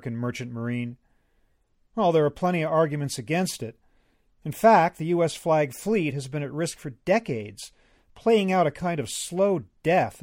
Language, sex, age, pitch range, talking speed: English, male, 40-59, 125-175 Hz, 170 wpm